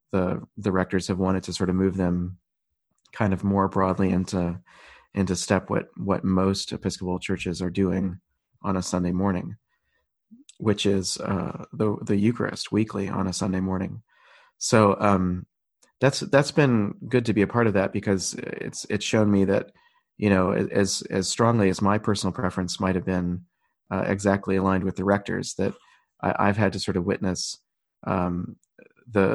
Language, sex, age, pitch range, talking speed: English, male, 30-49, 90-100 Hz, 170 wpm